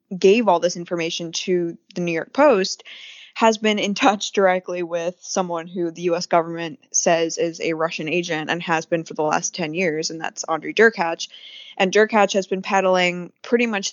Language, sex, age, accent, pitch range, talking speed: English, female, 20-39, American, 170-200 Hz, 190 wpm